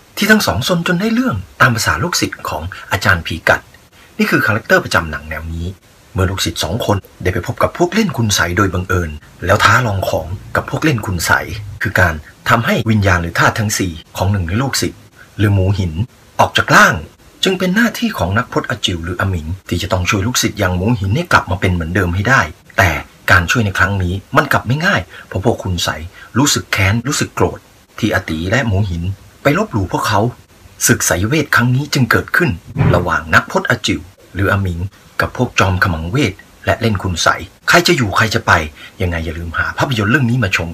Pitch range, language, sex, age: 90-115 Hz, Thai, male, 30-49